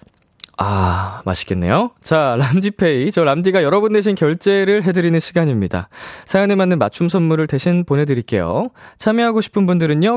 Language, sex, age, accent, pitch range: Korean, male, 20-39, native, 115-185 Hz